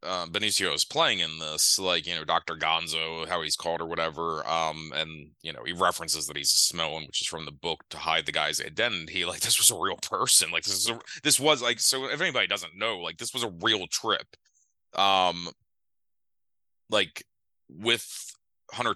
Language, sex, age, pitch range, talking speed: English, male, 30-49, 80-95 Hz, 200 wpm